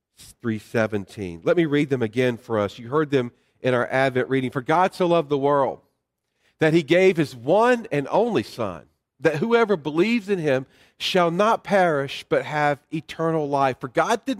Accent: American